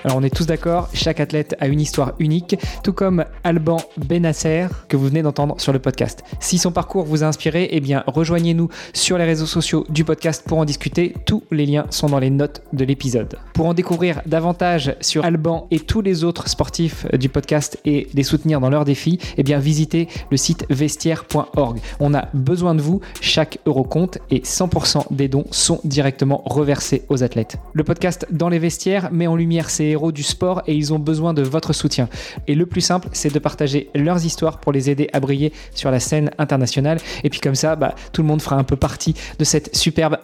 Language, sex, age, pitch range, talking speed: French, male, 20-39, 140-165 Hz, 215 wpm